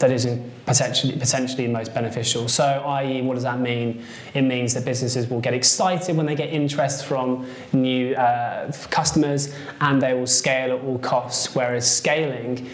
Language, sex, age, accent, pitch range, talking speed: English, male, 20-39, British, 120-145 Hz, 170 wpm